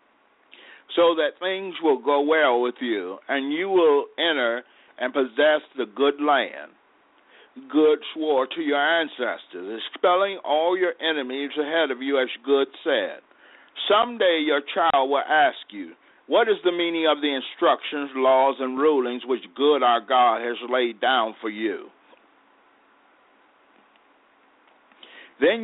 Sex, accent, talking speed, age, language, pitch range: male, American, 135 wpm, 60-79, English, 130-170 Hz